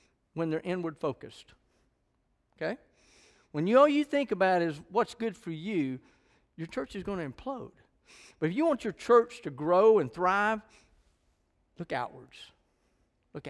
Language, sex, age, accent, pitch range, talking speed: English, male, 50-69, American, 135-165 Hz, 150 wpm